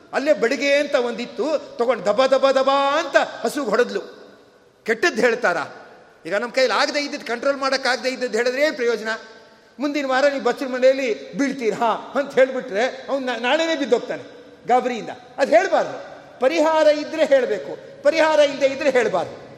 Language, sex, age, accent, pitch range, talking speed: Kannada, male, 50-69, native, 240-300 Hz, 140 wpm